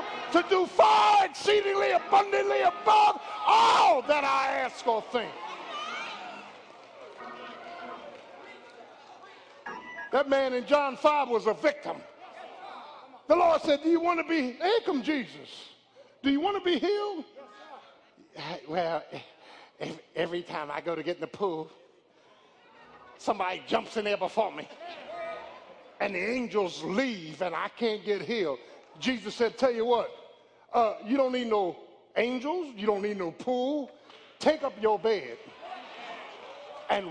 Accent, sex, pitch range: American, male, 245-360 Hz